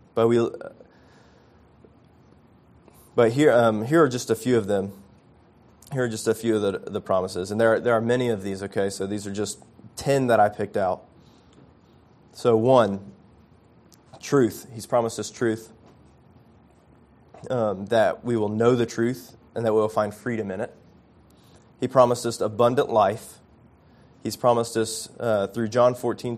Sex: male